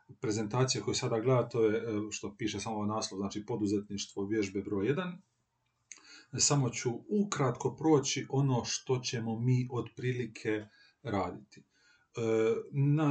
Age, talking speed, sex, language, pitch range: 40-59, 120 wpm, male, Croatian, 105-130 Hz